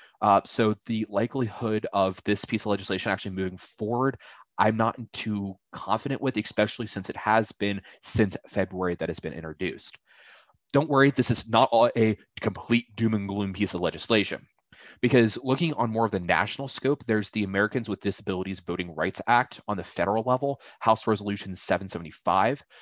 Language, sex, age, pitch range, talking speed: English, male, 20-39, 95-115 Hz, 170 wpm